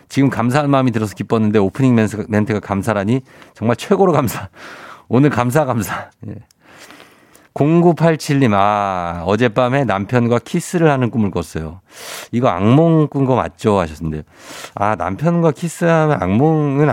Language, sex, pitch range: Korean, male, 100-155 Hz